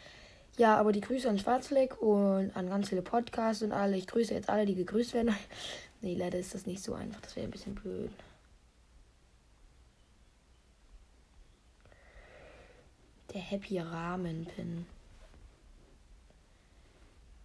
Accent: German